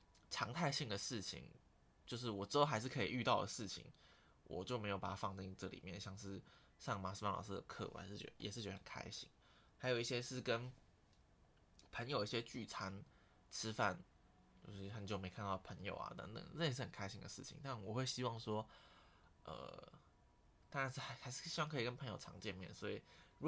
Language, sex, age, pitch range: Chinese, male, 20-39, 95-125 Hz